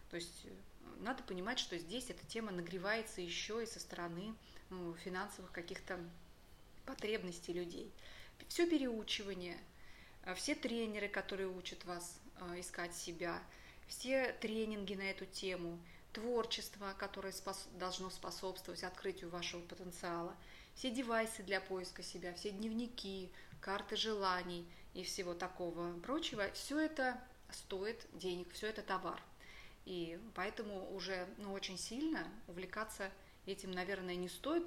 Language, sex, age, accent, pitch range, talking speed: Russian, female, 20-39, native, 180-220 Hz, 120 wpm